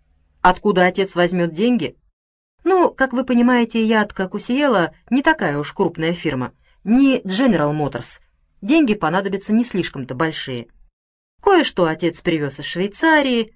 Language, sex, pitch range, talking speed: Russian, female, 155-225 Hz, 135 wpm